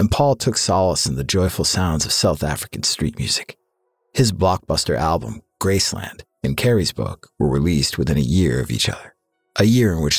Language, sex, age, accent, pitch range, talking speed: English, male, 50-69, American, 80-115 Hz, 190 wpm